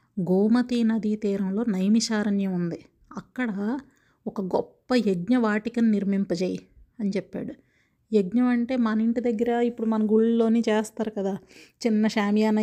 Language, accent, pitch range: Telugu, native, 205-230 Hz